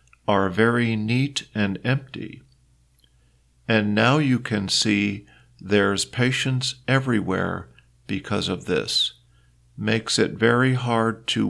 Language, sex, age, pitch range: Thai, male, 50-69, 85-120 Hz